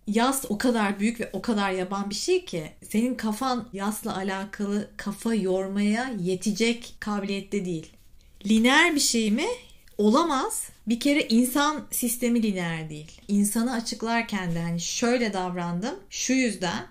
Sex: female